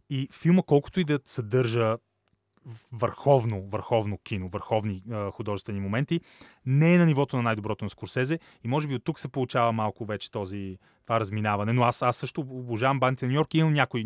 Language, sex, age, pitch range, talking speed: Bulgarian, male, 30-49, 105-135 Hz, 185 wpm